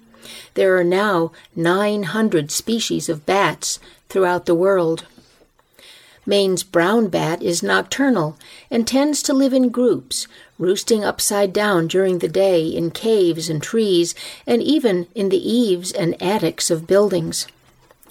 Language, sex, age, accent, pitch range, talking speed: English, female, 50-69, American, 170-220 Hz, 135 wpm